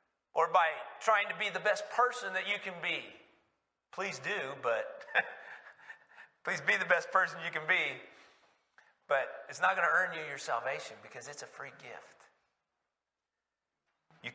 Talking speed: 160 wpm